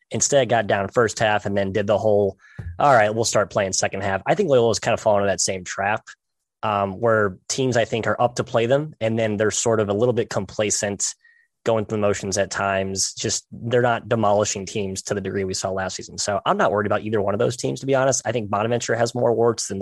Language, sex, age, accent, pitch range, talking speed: English, male, 20-39, American, 100-125 Hz, 255 wpm